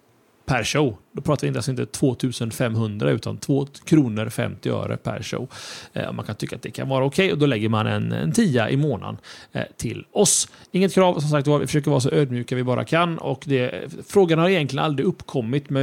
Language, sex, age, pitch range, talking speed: Swedish, male, 30-49, 120-170 Hz, 225 wpm